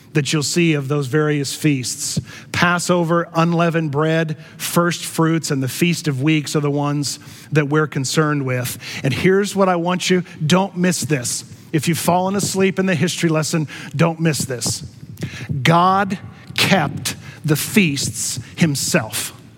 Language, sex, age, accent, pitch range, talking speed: English, male, 40-59, American, 140-180 Hz, 150 wpm